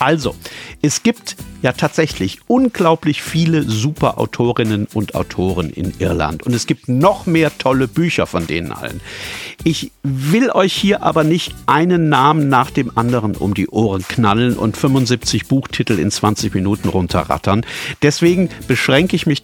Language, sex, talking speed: German, male, 150 wpm